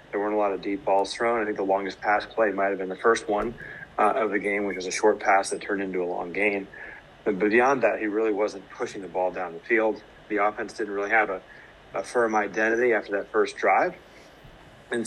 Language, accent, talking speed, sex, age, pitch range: English, American, 245 wpm, male, 30-49, 100-115 Hz